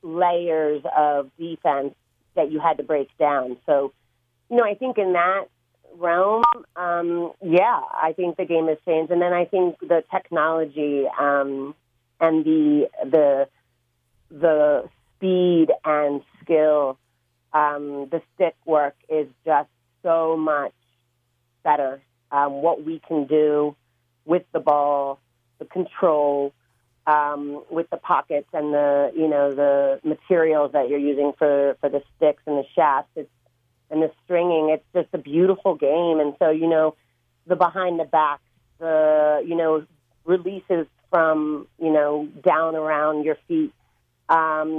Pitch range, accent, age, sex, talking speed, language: 145-165 Hz, American, 40-59, female, 145 wpm, English